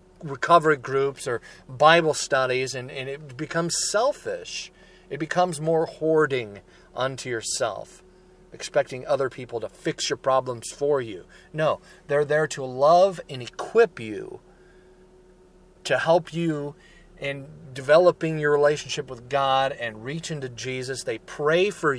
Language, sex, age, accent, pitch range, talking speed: English, male, 40-59, American, 120-165 Hz, 135 wpm